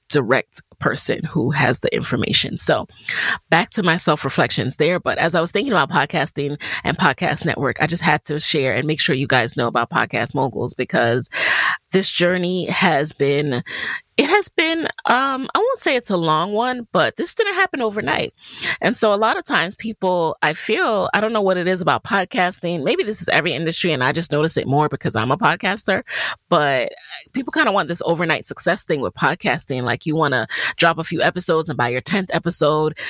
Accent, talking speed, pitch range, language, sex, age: American, 205 wpm, 150-185 Hz, English, female, 30-49